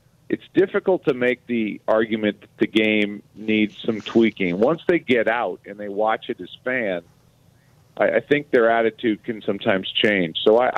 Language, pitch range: English, 105-130 Hz